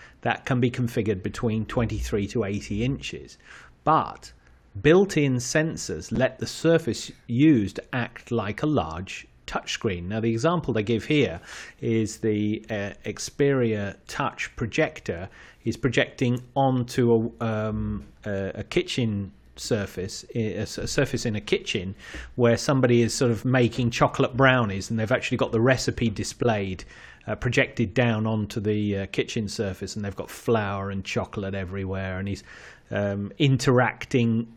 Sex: male